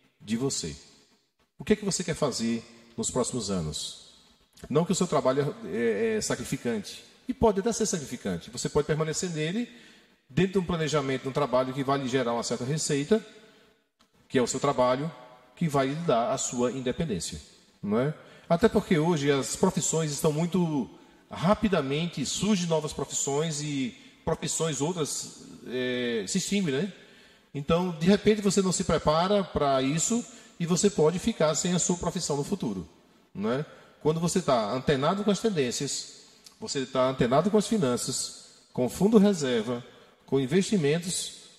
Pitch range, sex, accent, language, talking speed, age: 130-215 Hz, male, Brazilian, Portuguese, 165 wpm, 40-59